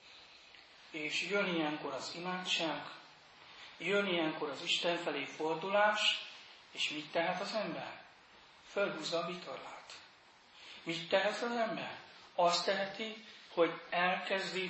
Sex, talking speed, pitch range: male, 110 wpm, 160-195 Hz